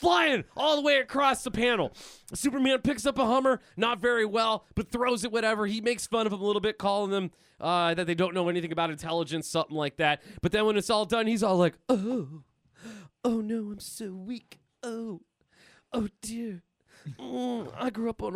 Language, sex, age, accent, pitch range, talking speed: English, male, 20-39, American, 190-265 Hz, 205 wpm